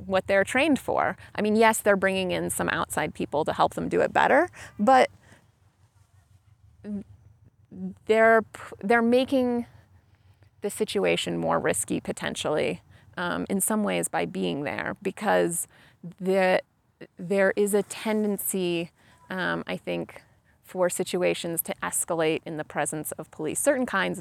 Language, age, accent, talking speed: English, 30-49, American, 135 wpm